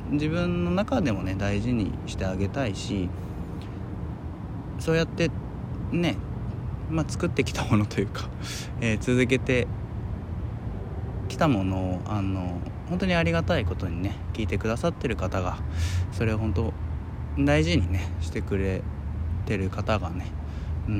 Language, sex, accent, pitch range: Japanese, male, native, 85-110 Hz